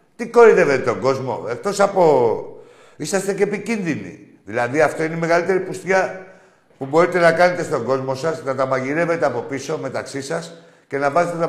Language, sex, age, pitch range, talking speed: Greek, male, 60-79, 135-175 Hz, 170 wpm